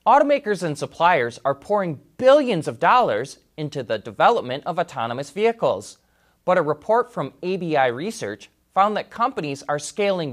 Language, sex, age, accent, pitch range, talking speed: English, male, 30-49, American, 135-205 Hz, 145 wpm